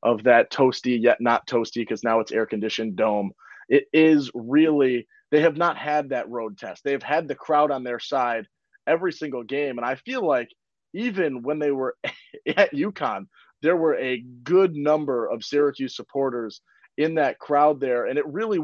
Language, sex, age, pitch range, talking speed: English, male, 30-49, 125-160 Hz, 185 wpm